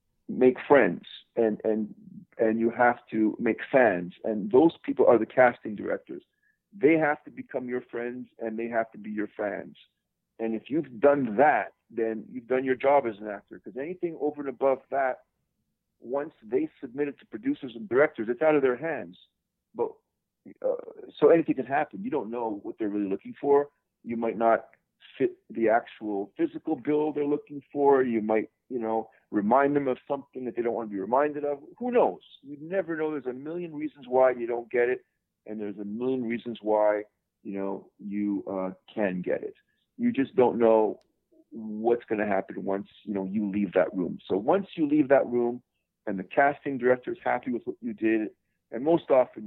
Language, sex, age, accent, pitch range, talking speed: English, male, 50-69, American, 110-150 Hz, 200 wpm